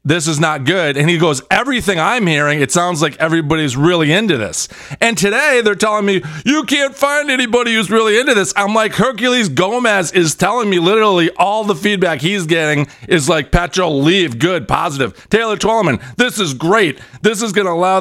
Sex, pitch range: male, 155-215 Hz